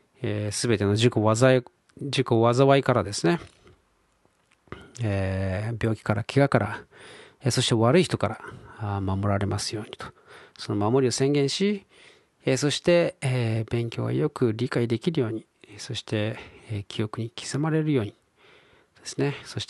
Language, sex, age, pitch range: Japanese, male, 40-59, 105-130 Hz